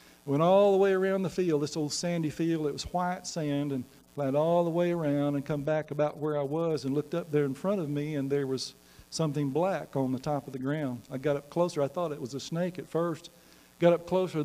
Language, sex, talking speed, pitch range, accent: English, male, 260 wpm, 135-160 Hz, American